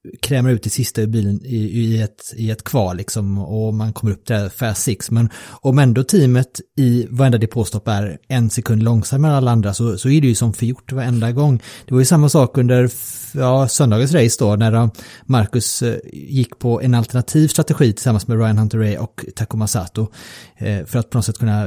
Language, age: Swedish, 30-49